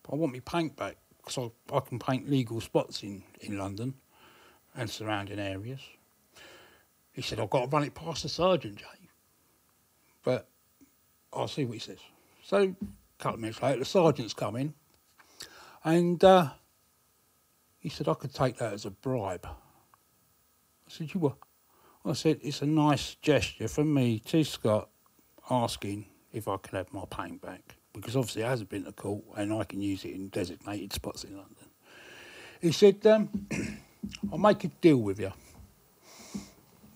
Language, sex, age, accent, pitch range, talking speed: English, male, 60-79, British, 105-160 Hz, 170 wpm